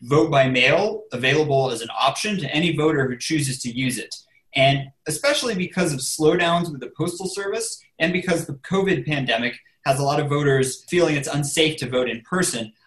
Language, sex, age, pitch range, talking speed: English, male, 30-49, 130-165 Hz, 190 wpm